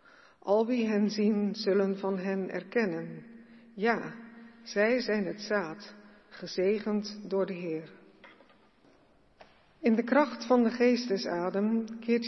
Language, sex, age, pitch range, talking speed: Dutch, female, 50-69, 195-235 Hz, 115 wpm